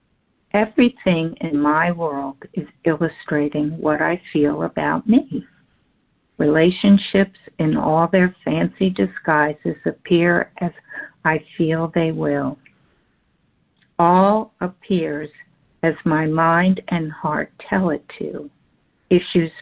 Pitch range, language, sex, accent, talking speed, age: 155-185 Hz, English, female, American, 105 wpm, 60-79